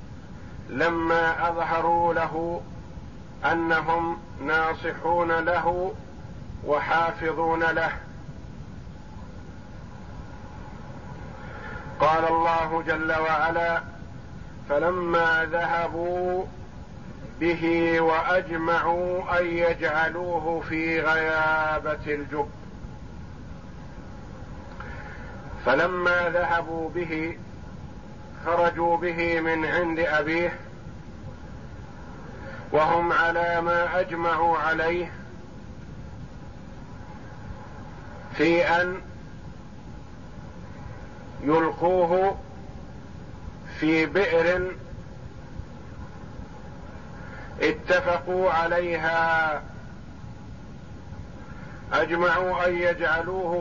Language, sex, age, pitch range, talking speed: Arabic, male, 50-69, 160-170 Hz, 50 wpm